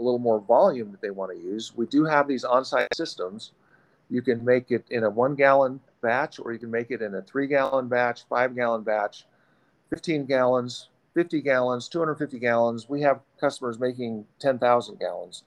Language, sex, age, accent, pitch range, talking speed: English, male, 50-69, American, 115-155 Hz, 190 wpm